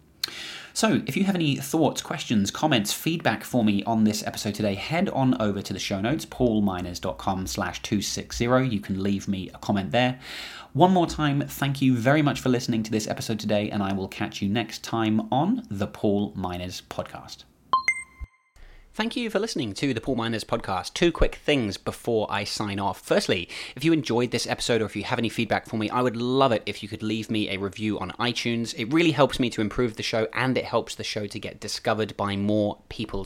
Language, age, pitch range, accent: English, 30-49, 105-140 Hz, British